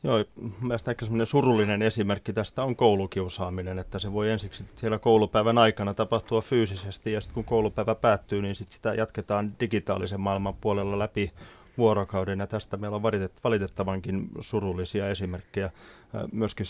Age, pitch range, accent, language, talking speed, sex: 30-49, 100-120 Hz, native, Finnish, 135 wpm, male